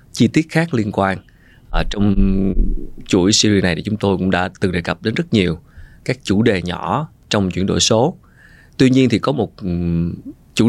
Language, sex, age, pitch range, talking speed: Vietnamese, male, 20-39, 90-120 Hz, 195 wpm